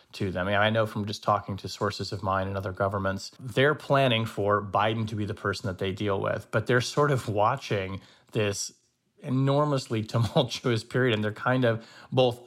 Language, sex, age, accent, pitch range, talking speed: English, male, 30-49, American, 100-120 Hz, 200 wpm